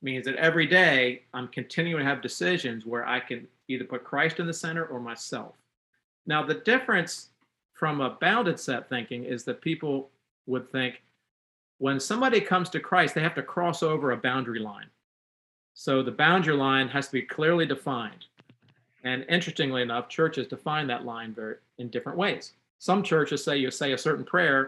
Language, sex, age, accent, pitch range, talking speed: English, male, 40-59, American, 125-160 Hz, 175 wpm